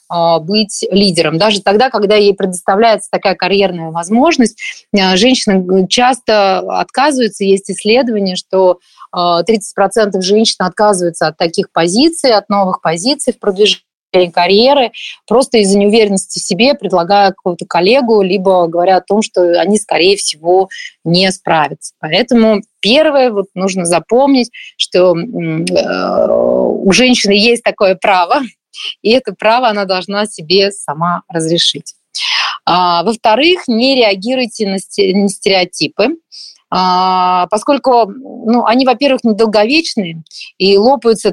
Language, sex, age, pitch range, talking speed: Russian, female, 30-49, 185-235 Hz, 110 wpm